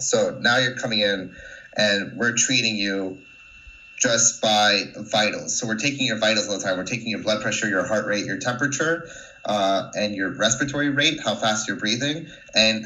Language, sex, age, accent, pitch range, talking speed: English, male, 30-49, American, 105-125 Hz, 185 wpm